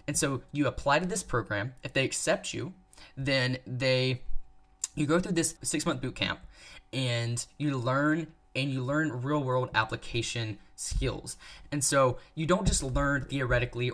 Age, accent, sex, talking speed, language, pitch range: 10-29, American, male, 155 wpm, English, 125-155 Hz